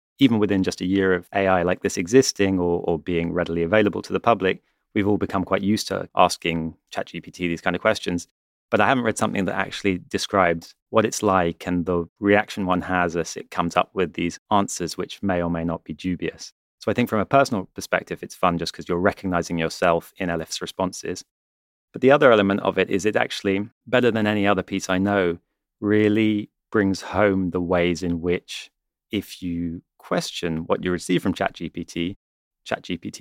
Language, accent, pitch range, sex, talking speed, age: English, British, 85-105 Hz, male, 200 wpm, 30-49